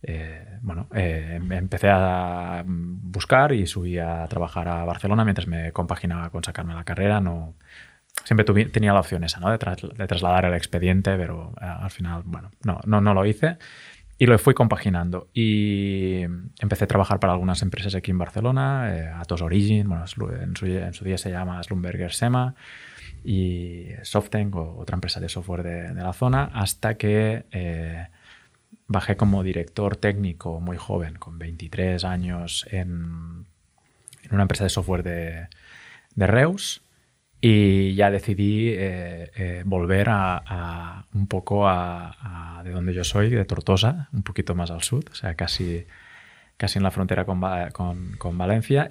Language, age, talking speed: Spanish, 20-39, 165 wpm